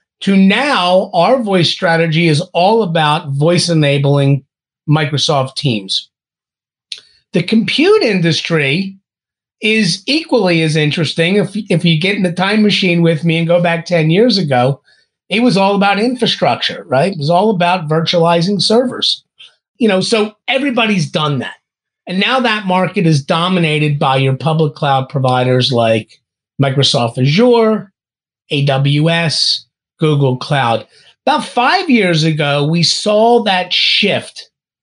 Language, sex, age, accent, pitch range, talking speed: English, male, 30-49, American, 145-200 Hz, 135 wpm